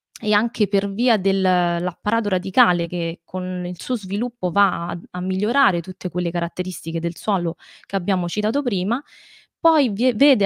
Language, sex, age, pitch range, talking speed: Italian, female, 20-39, 180-225 Hz, 150 wpm